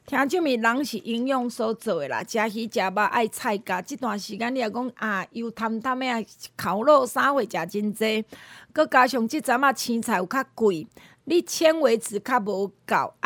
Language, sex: Chinese, female